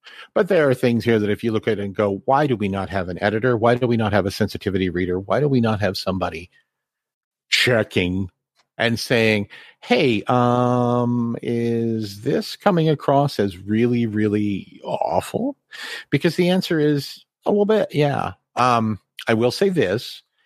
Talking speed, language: 175 wpm, English